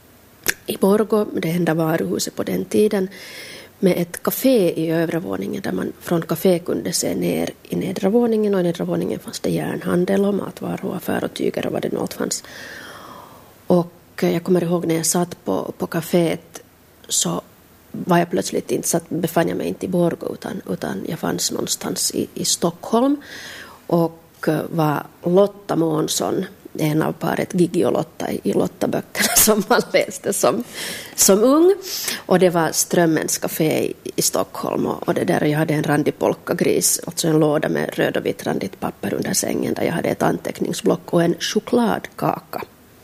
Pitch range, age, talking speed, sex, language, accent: 165-195 Hz, 30-49, 170 wpm, female, Swedish, Finnish